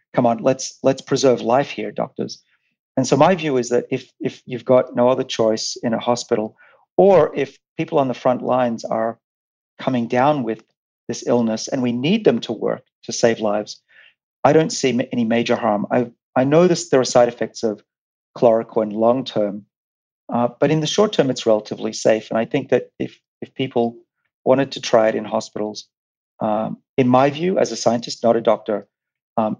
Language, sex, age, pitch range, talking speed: English, male, 40-59, 110-135 Hz, 195 wpm